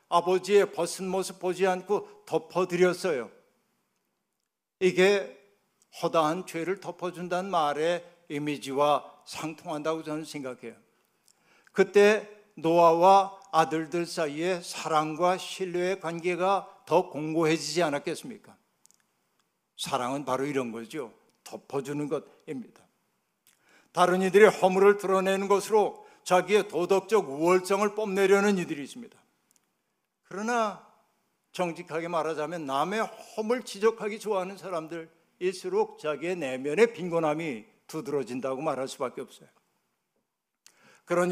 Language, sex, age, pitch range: Korean, male, 60-79, 155-195 Hz